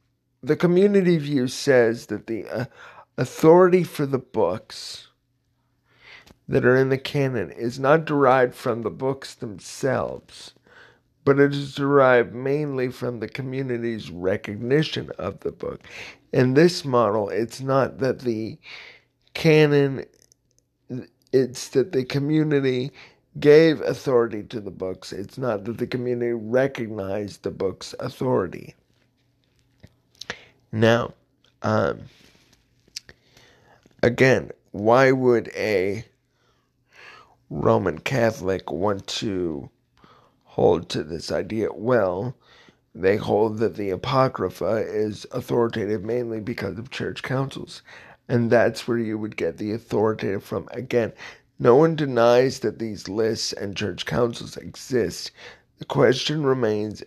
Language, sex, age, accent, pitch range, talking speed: English, male, 50-69, American, 115-135 Hz, 115 wpm